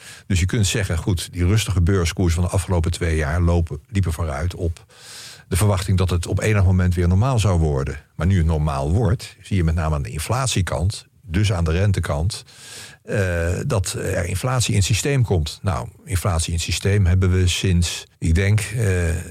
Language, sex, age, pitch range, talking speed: Dutch, male, 50-69, 85-105 Hz, 195 wpm